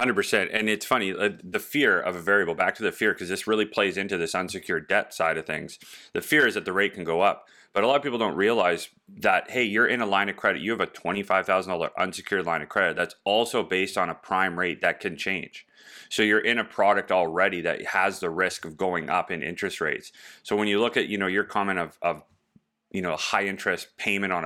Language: English